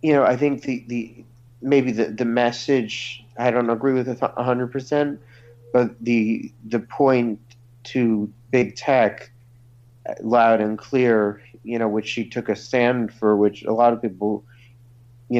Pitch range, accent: 105-120 Hz, American